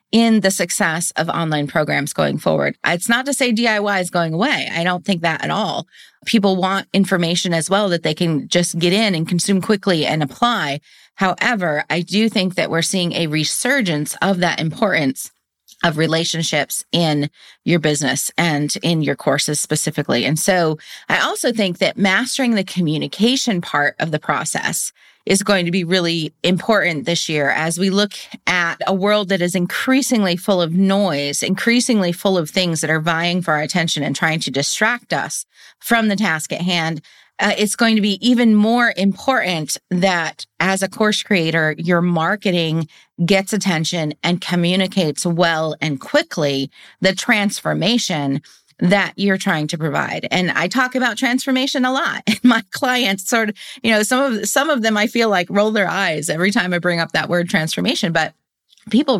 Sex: female